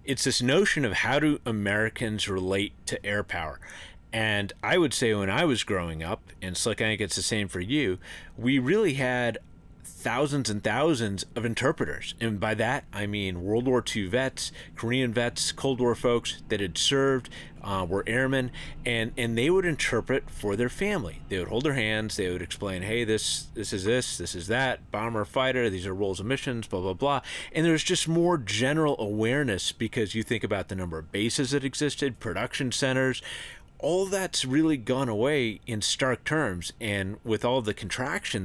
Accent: American